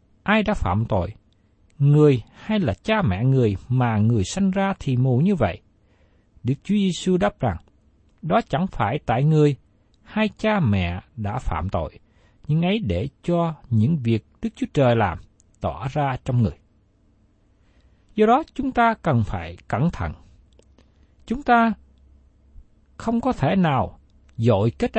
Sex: male